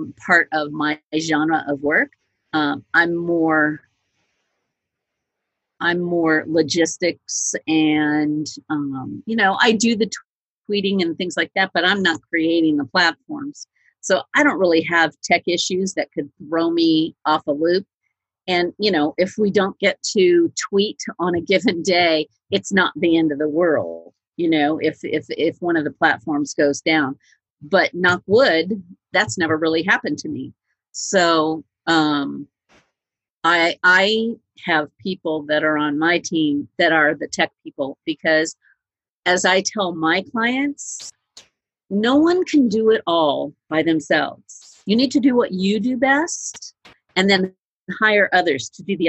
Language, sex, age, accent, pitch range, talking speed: English, female, 50-69, American, 155-195 Hz, 160 wpm